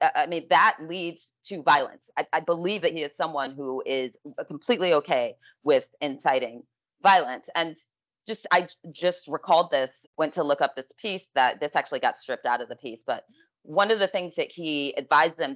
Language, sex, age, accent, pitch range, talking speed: English, female, 30-49, American, 140-190 Hz, 195 wpm